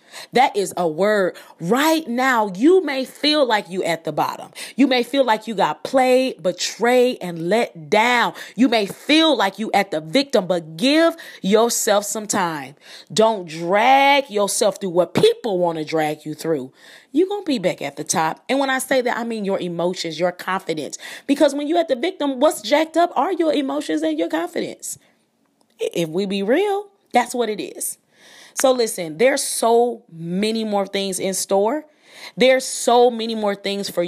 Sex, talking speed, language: female, 185 wpm, English